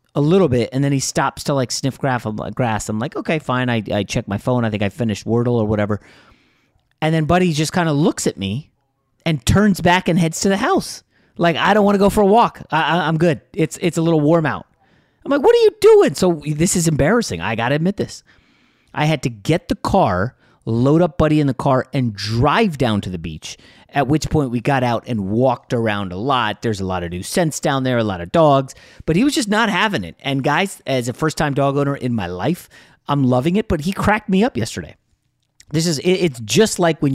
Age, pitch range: 30-49, 115-165 Hz